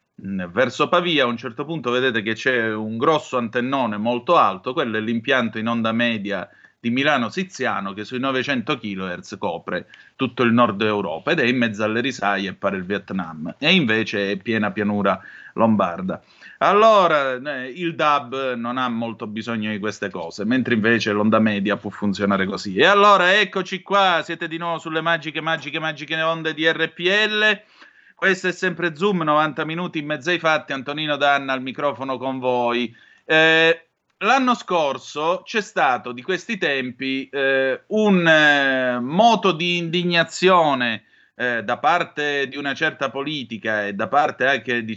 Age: 30-49